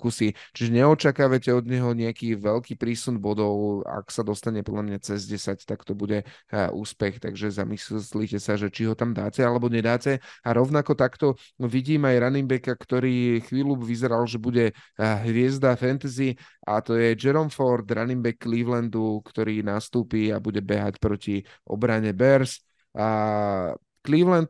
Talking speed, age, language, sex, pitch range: 150 wpm, 30-49, Slovak, male, 110-125 Hz